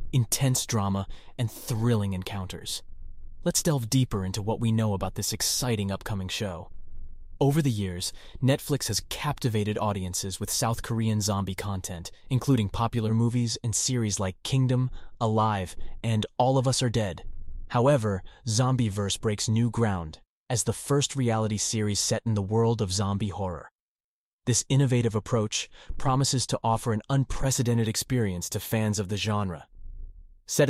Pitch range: 105-135 Hz